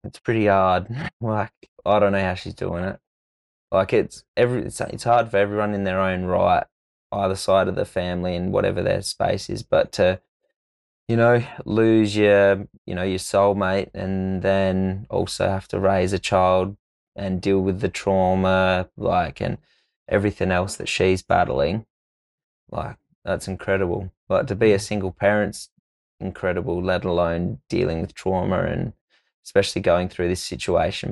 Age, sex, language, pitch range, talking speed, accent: 20-39, male, English, 90-100 Hz, 160 wpm, Australian